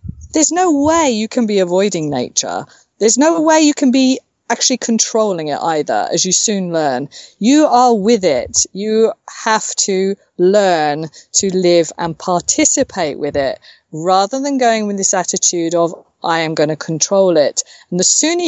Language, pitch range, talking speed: English, 175-260 Hz, 170 wpm